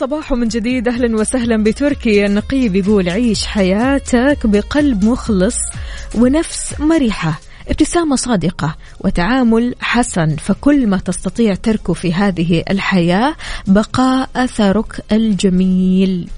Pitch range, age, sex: 190-240 Hz, 20-39, female